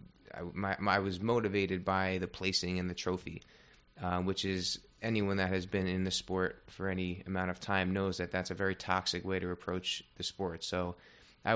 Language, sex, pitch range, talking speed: English, male, 90-100 Hz, 200 wpm